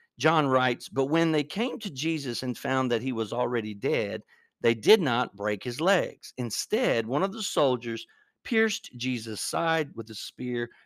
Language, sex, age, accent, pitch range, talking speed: English, male, 50-69, American, 115-165 Hz, 175 wpm